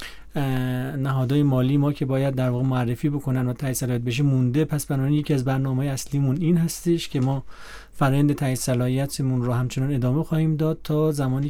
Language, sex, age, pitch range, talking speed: Persian, male, 40-59, 125-155 Hz, 175 wpm